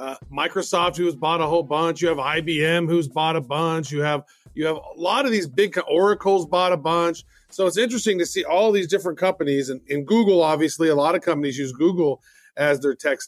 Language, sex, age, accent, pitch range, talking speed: English, male, 40-59, American, 145-185 Hz, 225 wpm